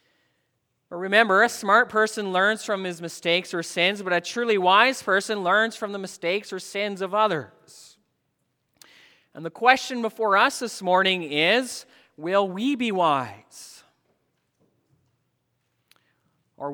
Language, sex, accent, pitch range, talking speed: English, male, American, 150-205 Hz, 130 wpm